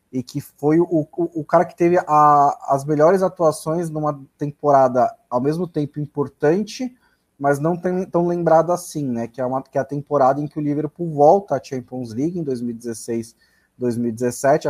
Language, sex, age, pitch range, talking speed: Portuguese, male, 20-39, 125-150 Hz, 160 wpm